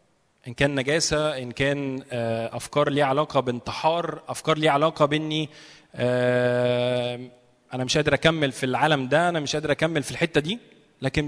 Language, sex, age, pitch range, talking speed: Arabic, male, 20-39, 135-175 Hz, 150 wpm